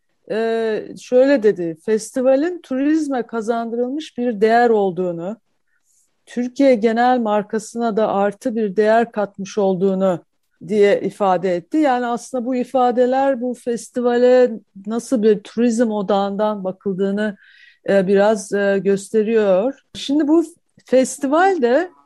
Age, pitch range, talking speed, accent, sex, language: 50-69, 200-245 Hz, 100 wpm, native, female, Turkish